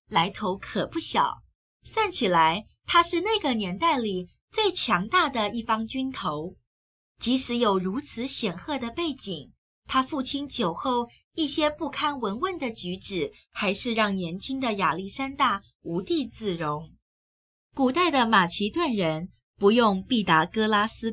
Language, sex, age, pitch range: Chinese, female, 20-39, 180-265 Hz